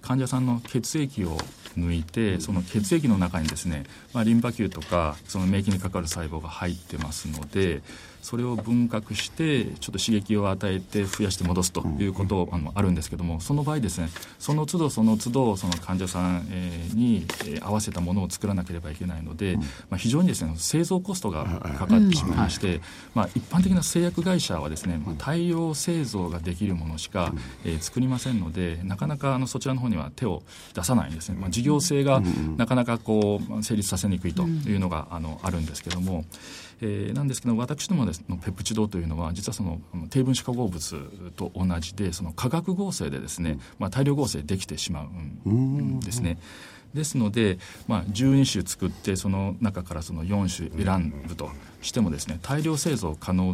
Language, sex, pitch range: Japanese, male, 85-120 Hz